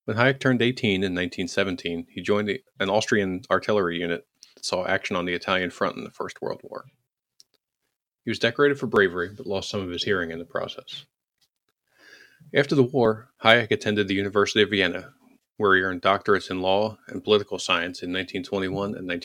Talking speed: 180 wpm